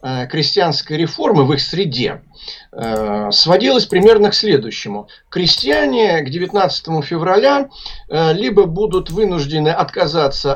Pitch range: 140-200 Hz